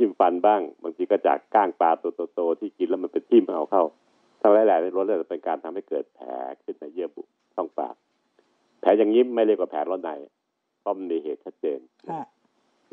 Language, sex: Thai, male